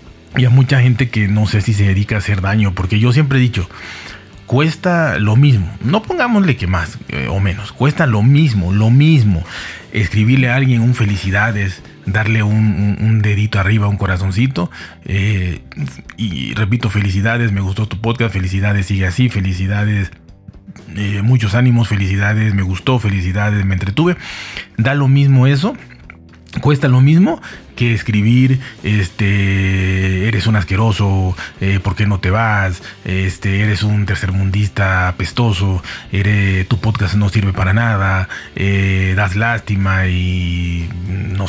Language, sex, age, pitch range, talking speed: Spanish, male, 40-59, 95-115 Hz, 150 wpm